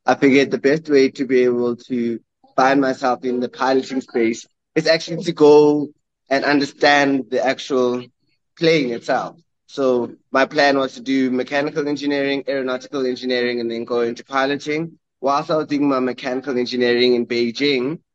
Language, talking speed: English, 160 wpm